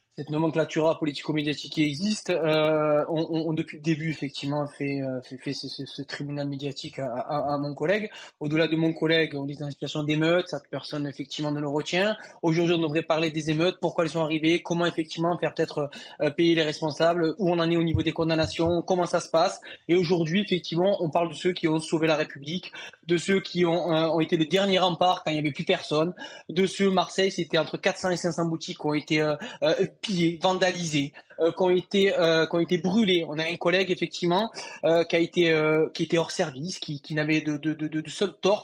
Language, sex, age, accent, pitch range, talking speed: French, male, 20-39, French, 155-180 Hz, 230 wpm